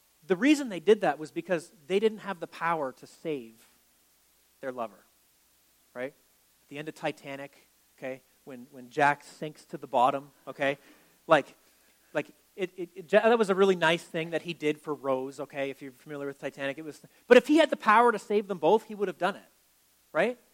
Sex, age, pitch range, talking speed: male, 40-59, 140-195 Hz, 205 wpm